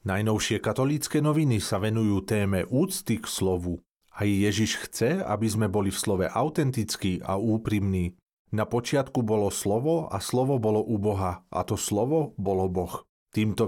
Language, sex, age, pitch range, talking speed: Slovak, male, 40-59, 100-130 Hz, 155 wpm